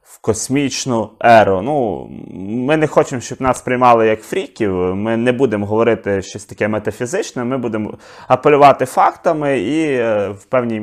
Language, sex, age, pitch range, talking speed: Ukrainian, male, 20-39, 110-140 Hz, 145 wpm